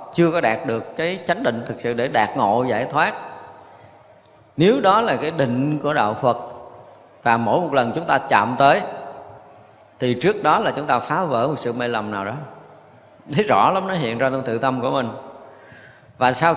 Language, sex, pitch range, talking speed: Vietnamese, male, 115-145 Hz, 205 wpm